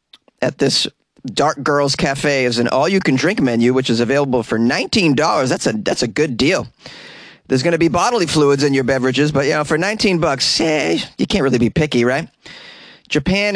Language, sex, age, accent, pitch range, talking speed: English, male, 30-49, American, 115-145 Hz, 190 wpm